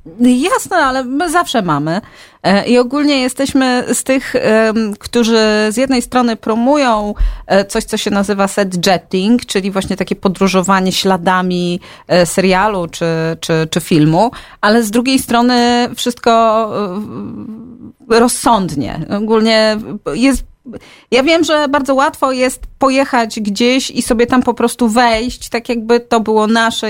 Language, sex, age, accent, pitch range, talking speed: Polish, female, 30-49, native, 205-250 Hz, 125 wpm